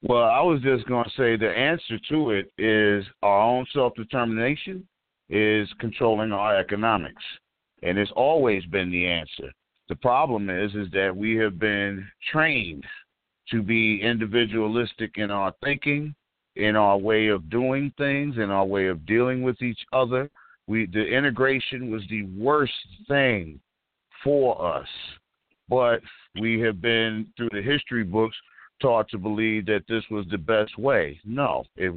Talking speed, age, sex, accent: 155 wpm, 50-69, male, American